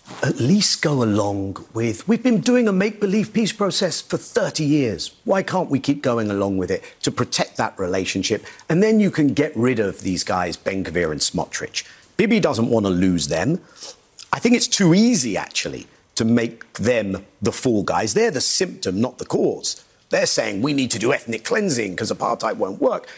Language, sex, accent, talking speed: English, male, British, 195 wpm